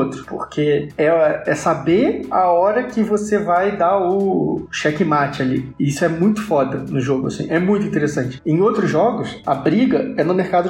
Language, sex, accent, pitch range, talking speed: Portuguese, male, Brazilian, 150-180 Hz, 175 wpm